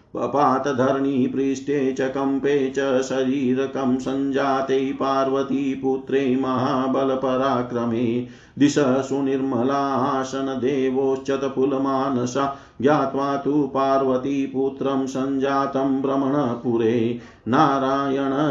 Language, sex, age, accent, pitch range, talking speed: Hindi, male, 50-69, native, 130-135 Hz, 65 wpm